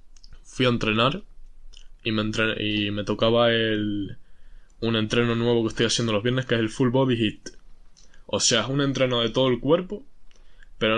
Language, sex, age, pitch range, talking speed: Spanish, male, 10-29, 110-130 Hz, 185 wpm